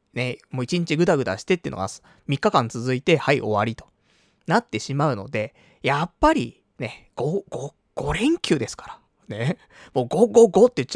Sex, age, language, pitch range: male, 20-39, Japanese, 115-185 Hz